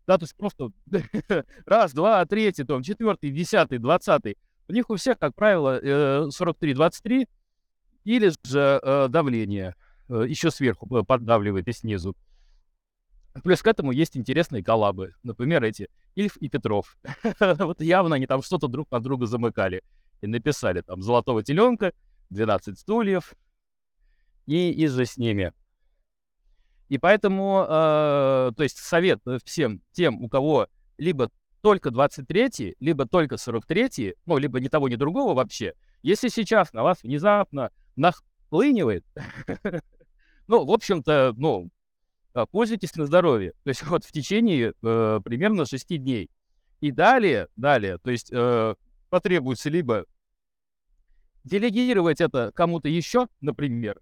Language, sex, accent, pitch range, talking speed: Russian, male, native, 125-190 Hz, 125 wpm